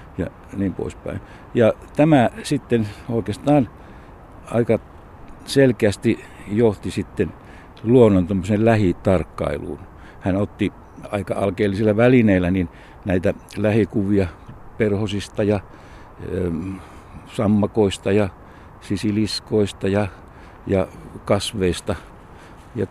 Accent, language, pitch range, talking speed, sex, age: native, Finnish, 95-115 Hz, 75 wpm, male, 60-79